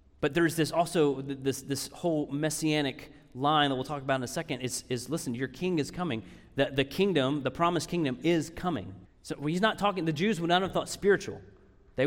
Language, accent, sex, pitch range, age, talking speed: English, American, male, 135-170 Hz, 30-49, 215 wpm